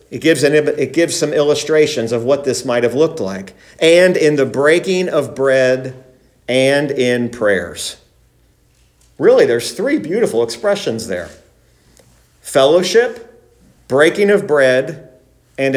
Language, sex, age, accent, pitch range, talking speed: English, male, 40-59, American, 135-185 Hz, 120 wpm